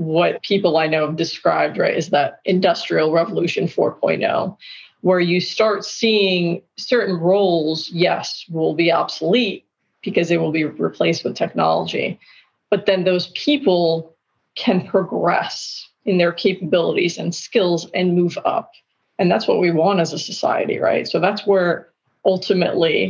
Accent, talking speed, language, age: American, 145 wpm, English, 30-49